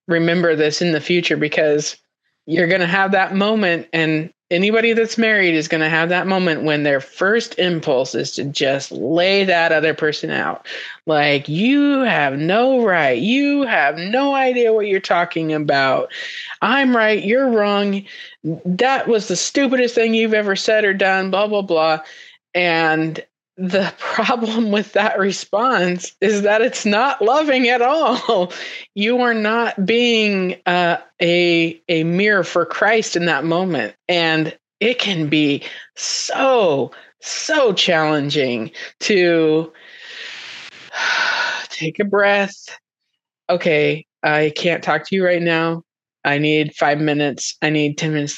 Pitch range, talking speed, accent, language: 155-220 Hz, 145 wpm, American, English